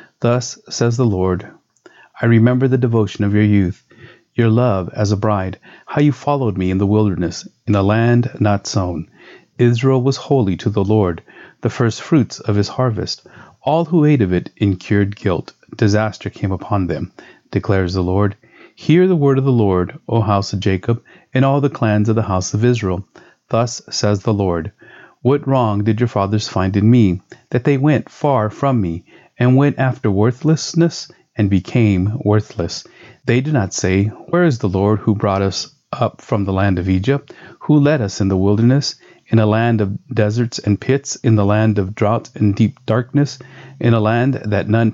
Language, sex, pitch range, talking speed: English, male, 100-130 Hz, 190 wpm